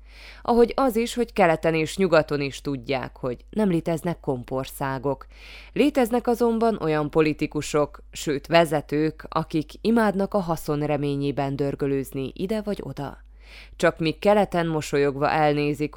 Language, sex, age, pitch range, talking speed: Hungarian, female, 20-39, 140-180 Hz, 120 wpm